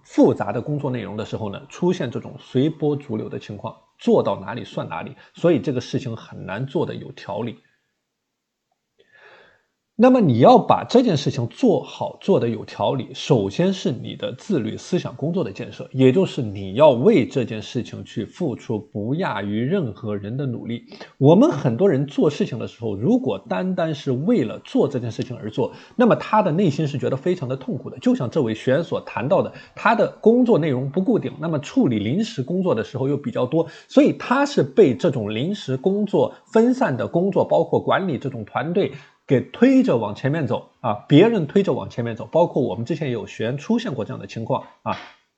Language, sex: Chinese, male